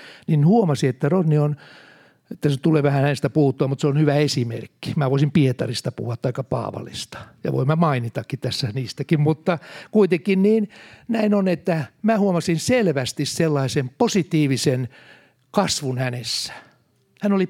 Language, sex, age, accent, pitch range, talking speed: Finnish, male, 60-79, native, 130-180 Hz, 145 wpm